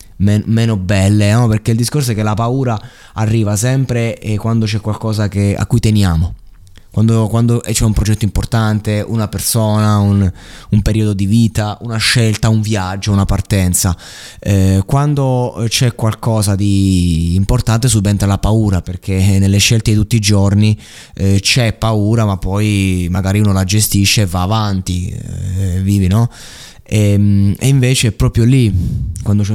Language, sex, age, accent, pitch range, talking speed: Italian, male, 20-39, native, 100-115 Hz, 160 wpm